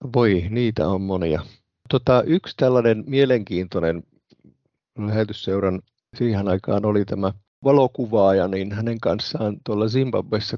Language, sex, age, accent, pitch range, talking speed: Finnish, male, 50-69, native, 105-125 Hz, 100 wpm